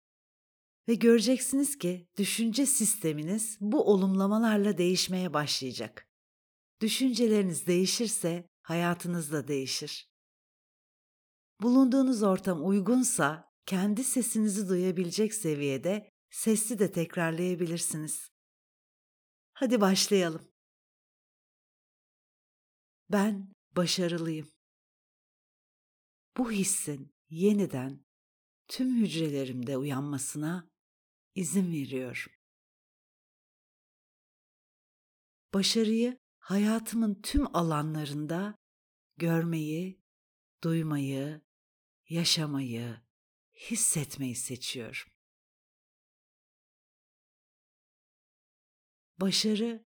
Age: 60-79